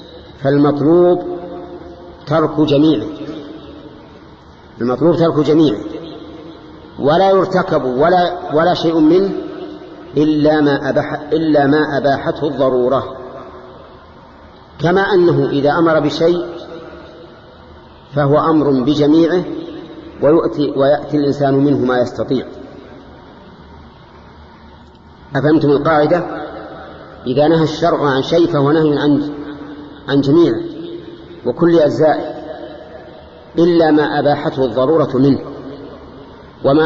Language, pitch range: Arabic, 140-170 Hz